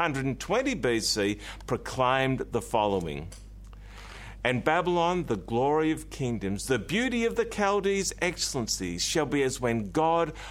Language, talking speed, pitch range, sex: English, 125 wpm, 110-170 Hz, male